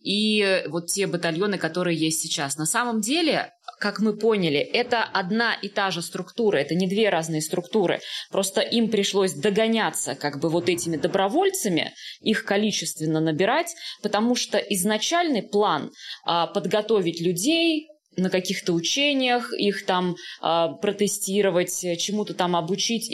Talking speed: 130 wpm